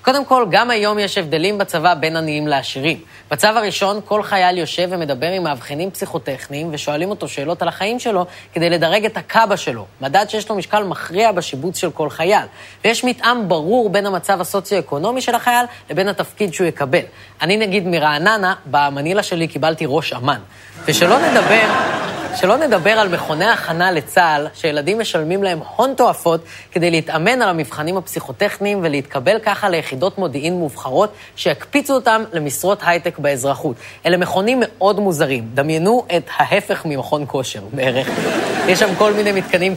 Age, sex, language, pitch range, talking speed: 20-39, female, Hebrew, 155-215 Hz, 155 wpm